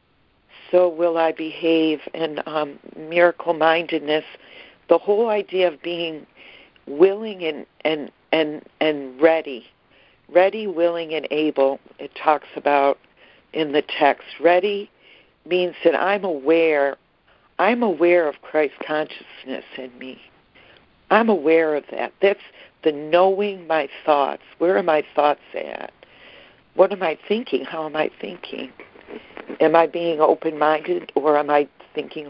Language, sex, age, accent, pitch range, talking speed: English, female, 60-79, American, 150-180 Hz, 130 wpm